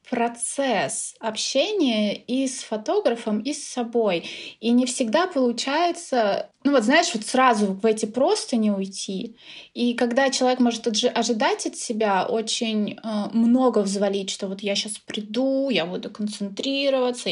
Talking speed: 145 wpm